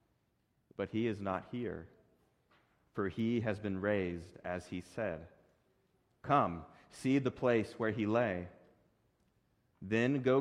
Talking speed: 125 wpm